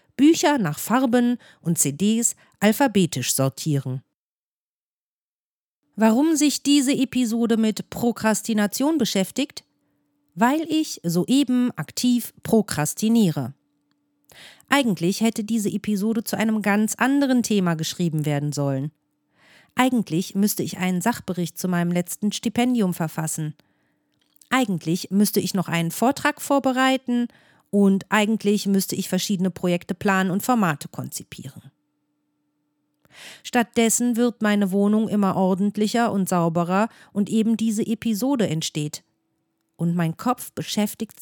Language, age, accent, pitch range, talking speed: German, 50-69, German, 165-235 Hz, 110 wpm